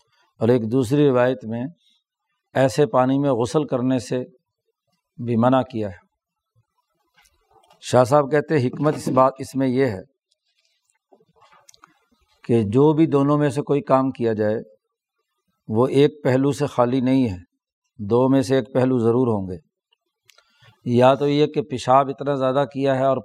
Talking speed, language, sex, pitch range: 155 wpm, Urdu, male, 125-150 Hz